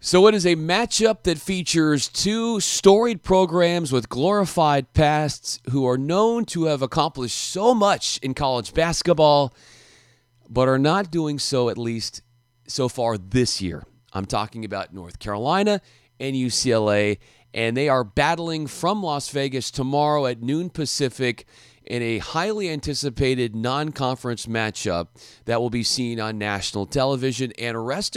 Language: English